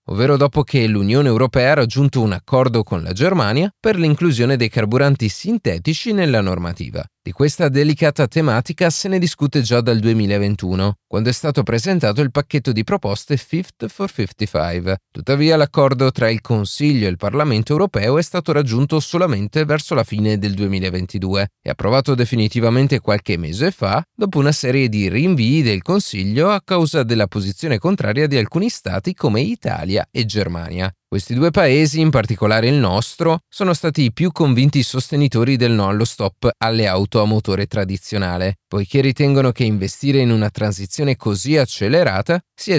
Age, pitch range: 30-49, 105-150 Hz